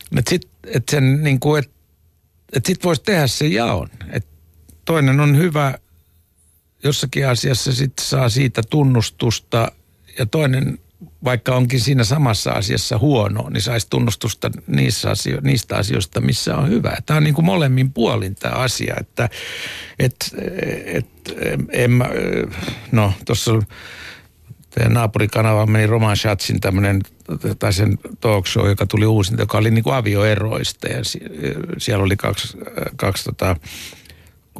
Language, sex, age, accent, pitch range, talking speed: Finnish, male, 60-79, native, 100-125 Hz, 120 wpm